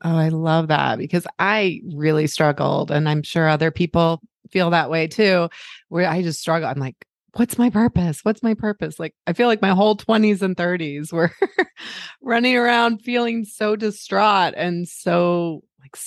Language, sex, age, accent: English, female, 30-49, American